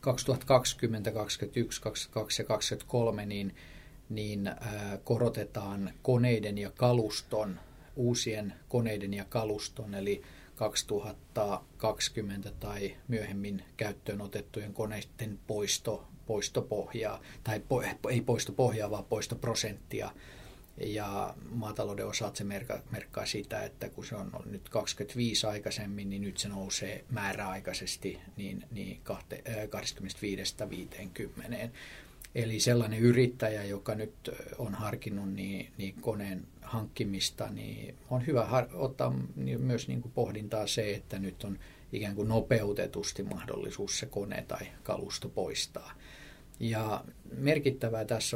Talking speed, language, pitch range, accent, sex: 100 wpm, Finnish, 100-120 Hz, native, male